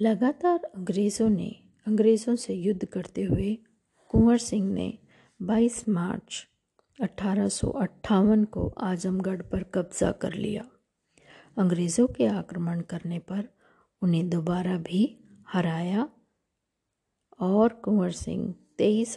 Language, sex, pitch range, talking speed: Hindi, female, 180-220 Hz, 105 wpm